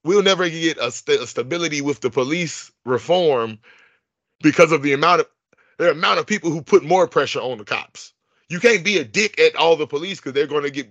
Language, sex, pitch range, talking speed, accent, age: English, male, 150-200 Hz, 220 wpm, American, 30-49